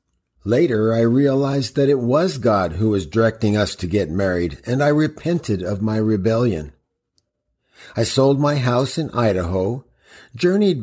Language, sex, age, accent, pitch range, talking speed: English, male, 50-69, American, 110-145 Hz, 150 wpm